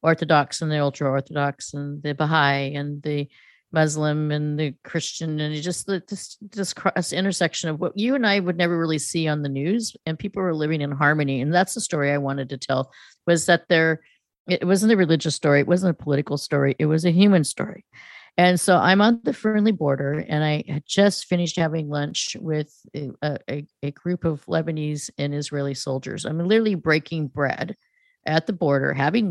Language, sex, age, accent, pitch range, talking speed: English, female, 50-69, American, 145-185 Hz, 200 wpm